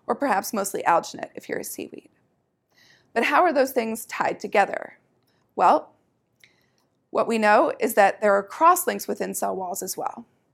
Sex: female